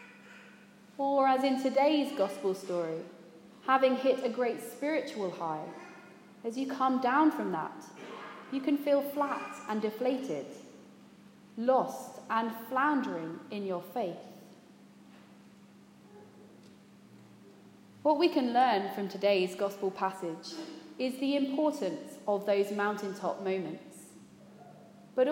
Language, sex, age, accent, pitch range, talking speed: English, female, 30-49, British, 190-265 Hz, 110 wpm